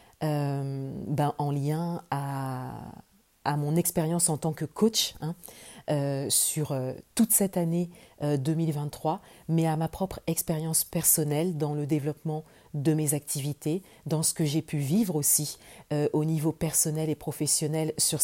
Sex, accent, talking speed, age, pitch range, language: female, French, 155 wpm, 40-59, 145-170 Hz, French